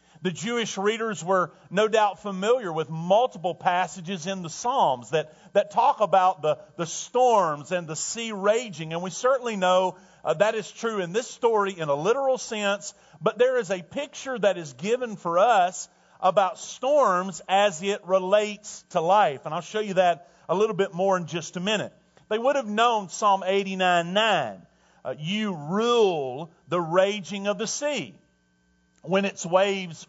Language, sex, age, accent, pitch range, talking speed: English, male, 40-59, American, 170-220 Hz, 175 wpm